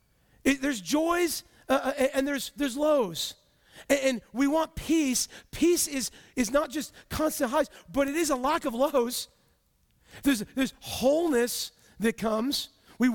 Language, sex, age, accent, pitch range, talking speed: English, male, 40-59, American, 200-275 Hz, 150 wpm